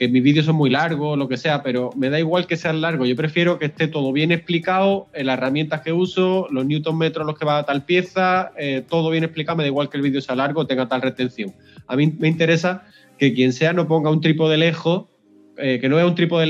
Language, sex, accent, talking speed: Spanish, male, Spanish, 260 wpm